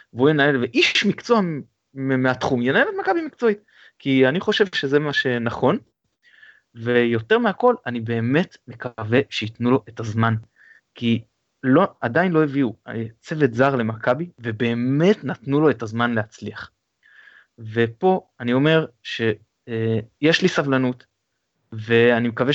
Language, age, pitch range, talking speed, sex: Hebrew, 20-39, 120-170 Hz, 125 wpm, male